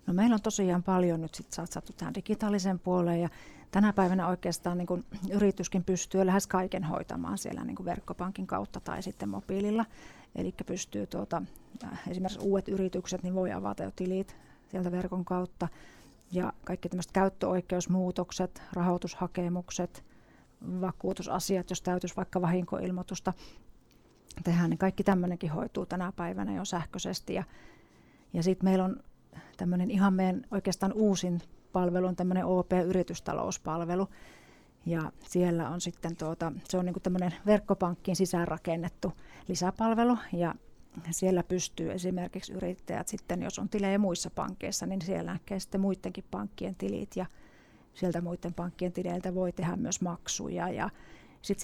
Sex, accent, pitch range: female, native, 180-195 Hz